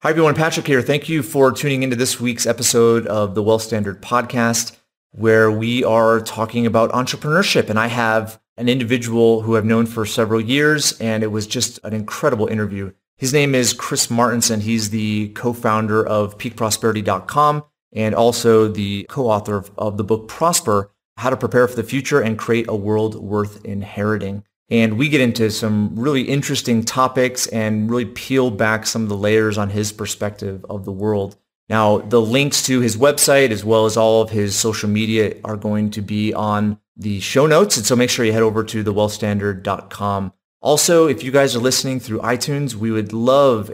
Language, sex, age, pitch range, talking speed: English, male, 30-49, 105-125 Hz, 185 wpm